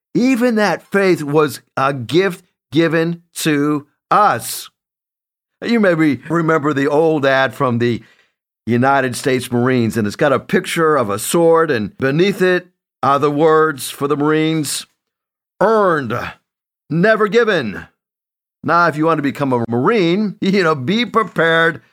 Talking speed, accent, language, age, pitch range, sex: 140 wpm, American, English, 50-69, 145-195 Hz, male